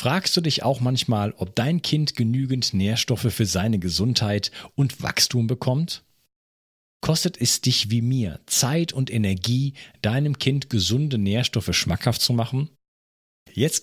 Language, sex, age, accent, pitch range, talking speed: German, male, 50-69, German, 100-145 Hz, 140 wpm